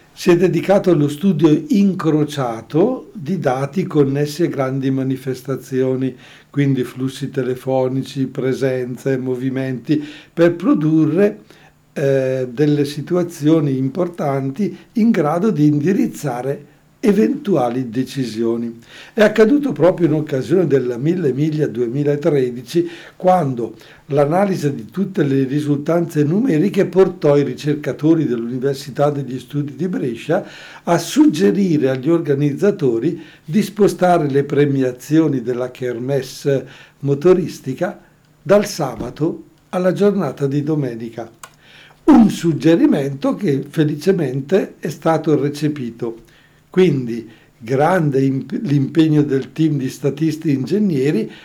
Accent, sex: native, male